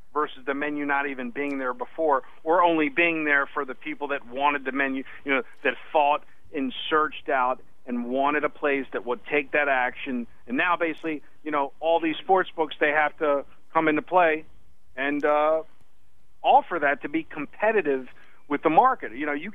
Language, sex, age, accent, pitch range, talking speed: English, male, 50-69, American, 140-170 Hz, 195 wpm